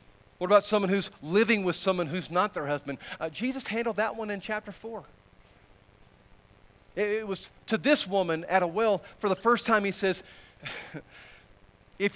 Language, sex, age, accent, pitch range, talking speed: English, male, 50-69, American, 155-210 Hz, 175 wpm